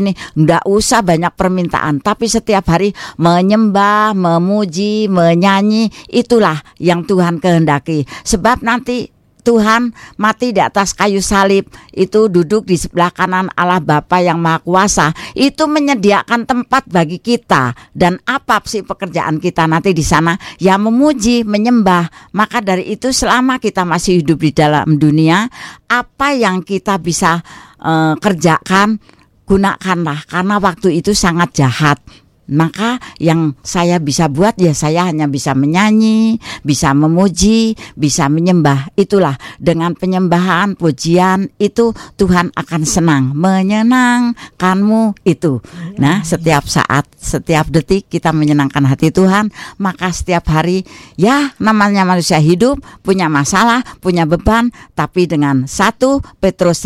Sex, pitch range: female, 160-210 Hz